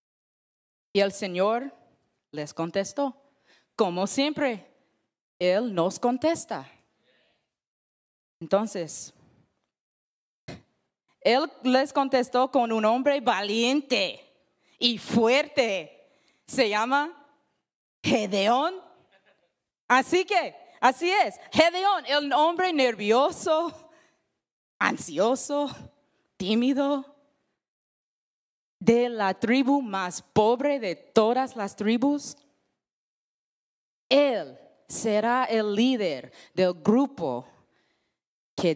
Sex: female